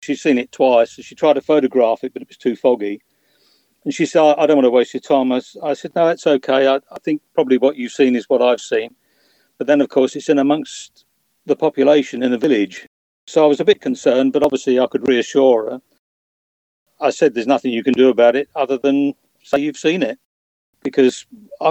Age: 50-69